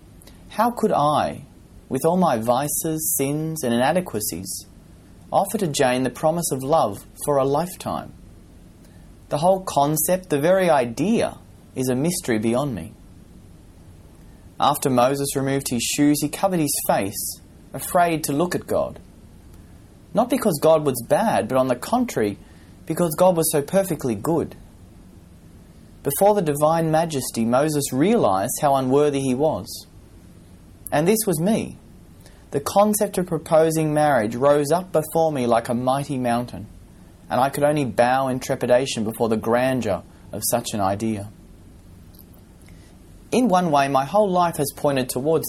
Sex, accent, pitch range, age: male, Australian, 95-155 Hz, 30-49